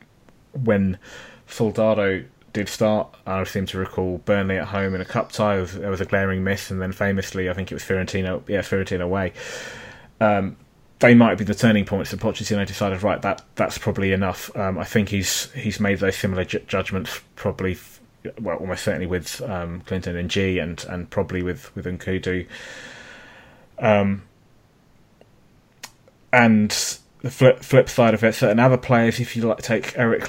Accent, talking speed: British, 180 wpm